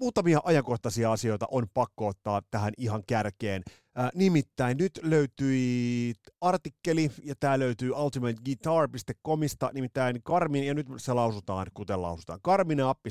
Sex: male